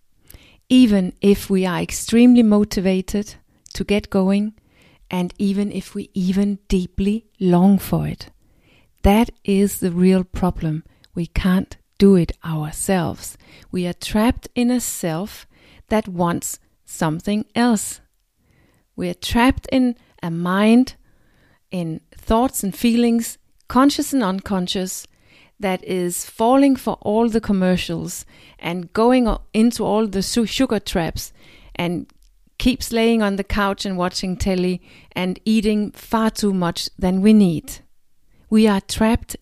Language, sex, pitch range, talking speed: English, female, 185-225 Hz, 130 wpm